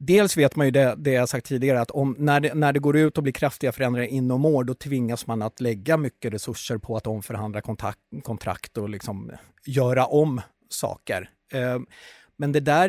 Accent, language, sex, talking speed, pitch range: native, Swedish, male, 205 wpm, 110-150 Hz